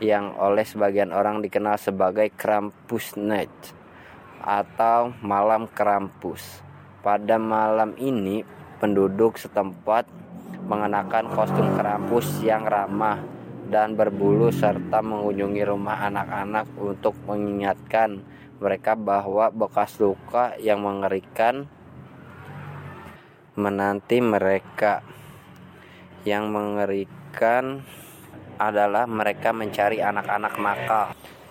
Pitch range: 100-110 Hz